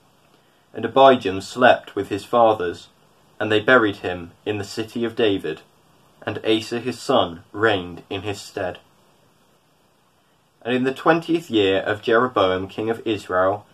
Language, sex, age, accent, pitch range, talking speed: English, male, 20-39, British, 100-125 Hz, 145 wpm